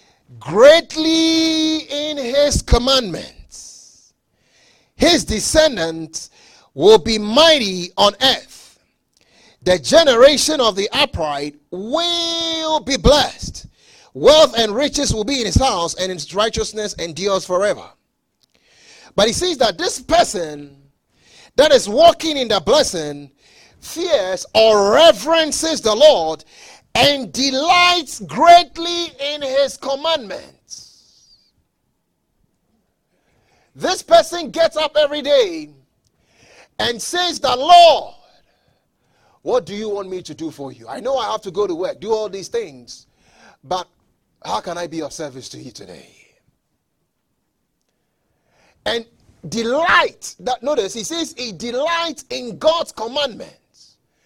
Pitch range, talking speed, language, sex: 190-320 Hz, 120 wpm, English, male